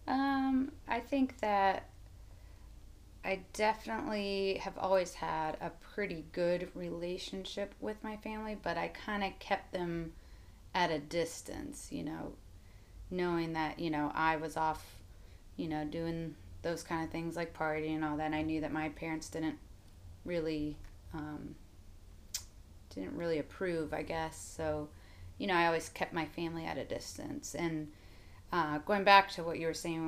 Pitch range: 140-175 Hz